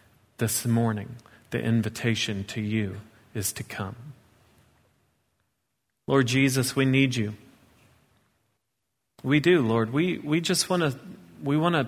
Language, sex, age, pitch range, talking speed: English, male, 40-59, 110-130 Hz, 125 wpm